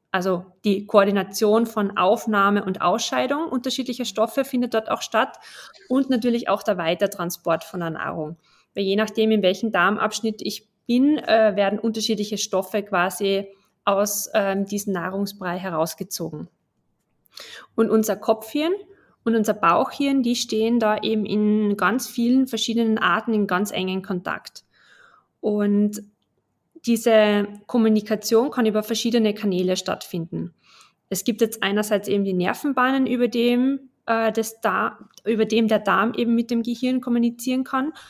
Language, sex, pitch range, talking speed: German, female, 200-240 Hz, 135 wpm